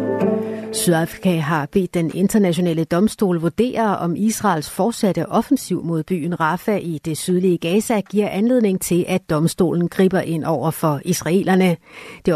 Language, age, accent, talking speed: Danish, 60-79, native, 140 wpm